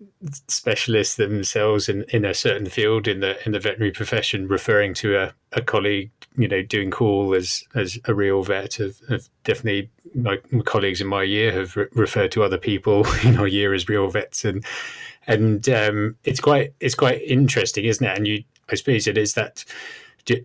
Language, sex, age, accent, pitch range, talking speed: English, male, 30-49, British, 100-120 Hz, 190 wpm